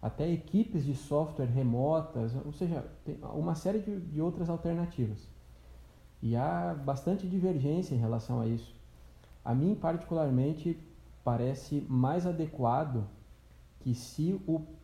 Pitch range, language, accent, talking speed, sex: 115-155 Hz, Portuguese, Brazilian, 125 wpm, male